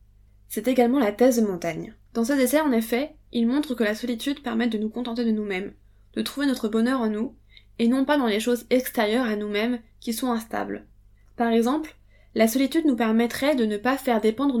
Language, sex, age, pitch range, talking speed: French, female, 20-39, 215-245 Hz, 210 wpm